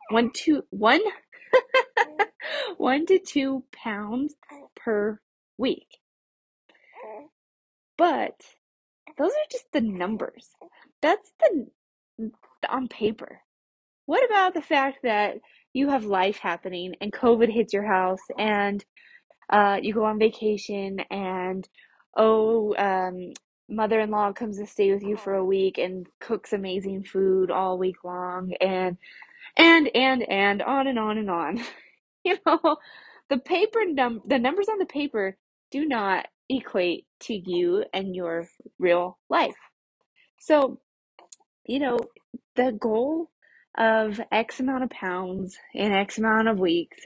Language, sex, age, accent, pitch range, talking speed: English, female, 10-29, American, 195-280 Hz, 130 wpm